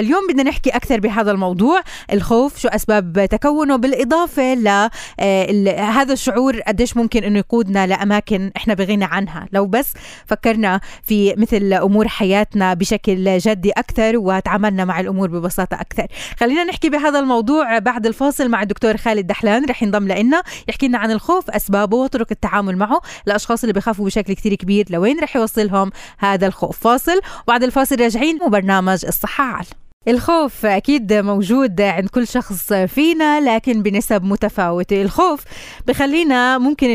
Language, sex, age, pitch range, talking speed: Arabic, female, 20-39, 200-250 Hz, 145 wpm